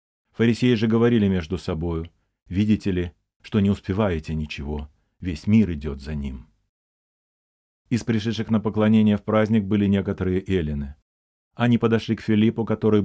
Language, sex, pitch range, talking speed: Russian, male, 85-110 Hz, 140 wpm